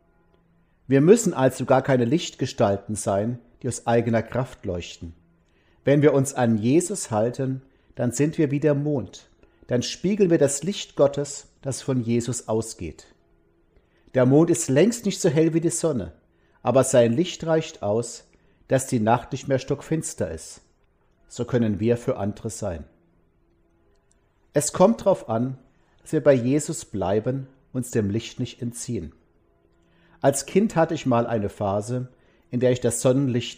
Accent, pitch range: German, 95-135 Hz